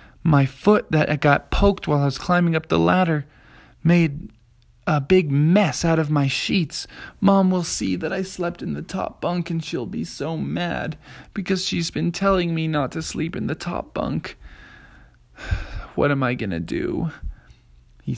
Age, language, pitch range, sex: 20-39, English, 125-165 Hz, male